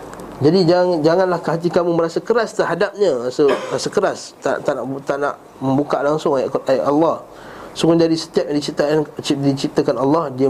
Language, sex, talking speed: Malay, male, 165 wpm